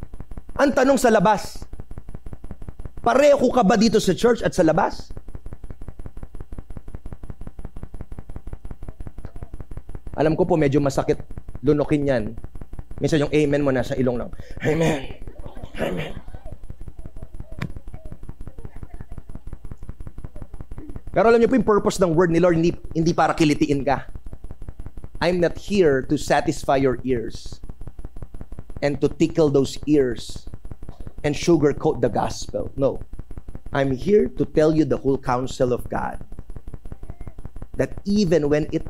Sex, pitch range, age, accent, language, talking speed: male, 105-160 Hz, 30-49, Filipino, English, 120 wpm